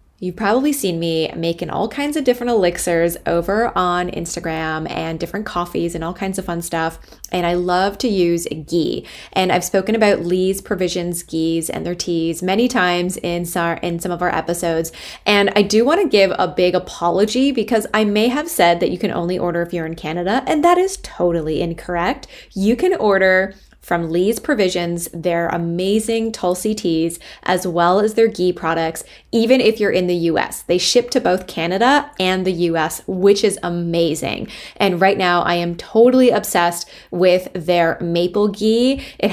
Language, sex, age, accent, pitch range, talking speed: English, female, 20-39, American, 170-210 Hz, 180 wpm